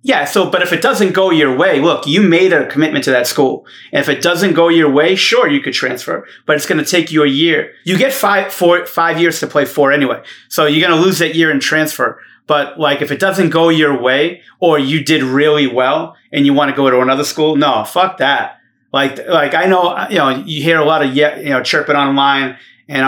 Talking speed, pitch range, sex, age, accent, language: 245 wpm, 135-160 Hz, male, 30-49, American, English